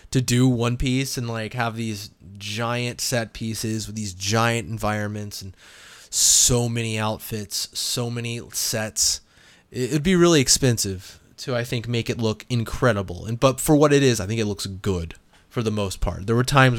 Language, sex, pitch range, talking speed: English, male, 105-130 Hz, 180 wpm